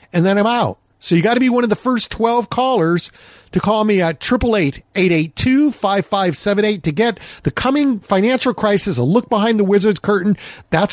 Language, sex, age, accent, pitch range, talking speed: English, male, 50-69, American, 160-215 Hz, 190 wpm